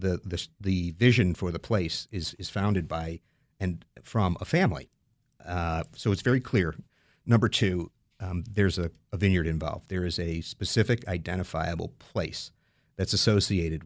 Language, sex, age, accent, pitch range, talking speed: English, male, 50-69, American, 85-110 Hz, 155 wpm